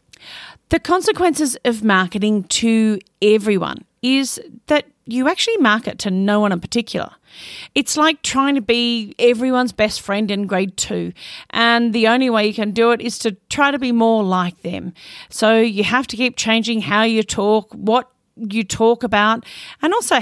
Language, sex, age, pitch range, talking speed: English, female, 40-59, 205-255 Hz, 170 wpm